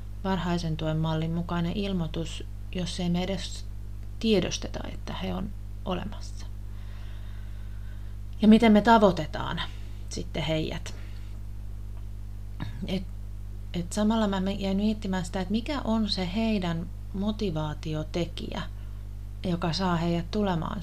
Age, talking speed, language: 30-49, 100 wpm, Finnish